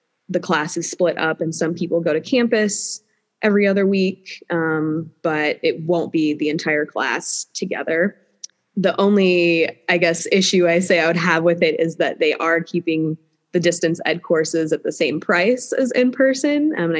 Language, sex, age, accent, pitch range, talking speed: English, female, 20-39, American, 160-190 Hz, 180 wpm